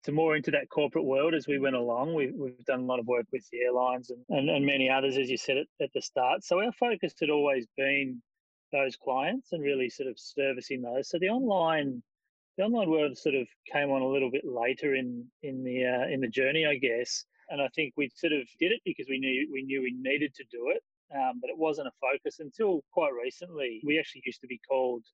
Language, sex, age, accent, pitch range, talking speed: English, male, 30-49, Australian, 130-160 Hz, 245 wpm